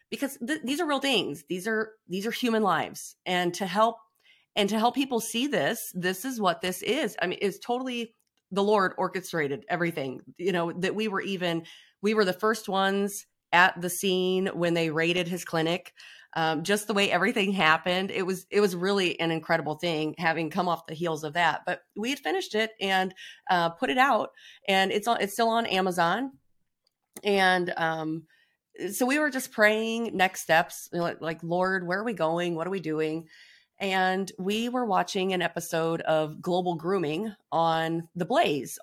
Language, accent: English, American